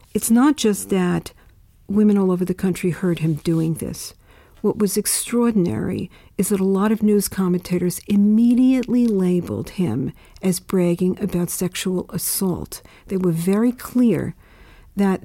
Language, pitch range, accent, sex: English, 170-210 Hz, American, female